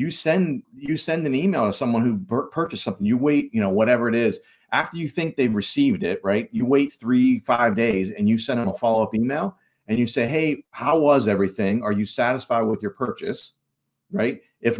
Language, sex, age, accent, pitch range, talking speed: English, male, 40-59, American, 110-150 Hz, 215 wpm